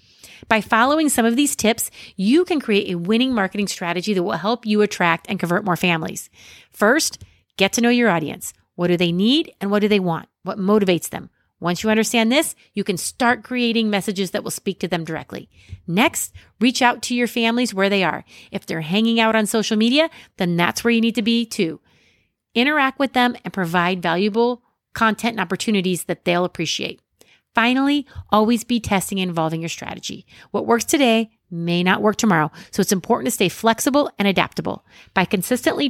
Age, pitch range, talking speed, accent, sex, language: 30-49, 185-245 Hz, 195 wpm, American, female, English